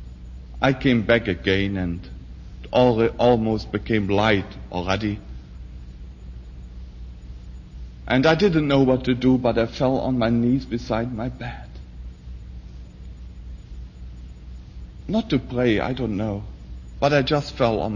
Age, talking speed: 60-79, 125 wpm